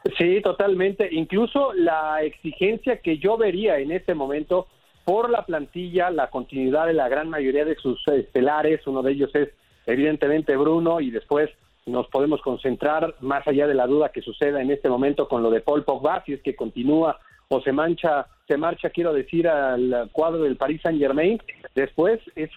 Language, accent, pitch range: Spanish, Mexican, 140-175 Hz